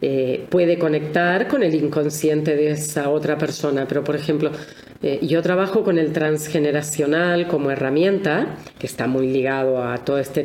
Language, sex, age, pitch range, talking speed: Spanish, female, 40-59, 150-185 Hz, 160 wpm